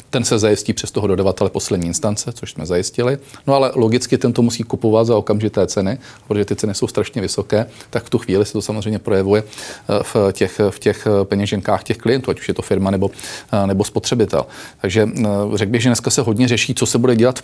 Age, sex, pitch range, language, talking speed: 40-59, male, 100-115 Hz, Czech, 215 wpm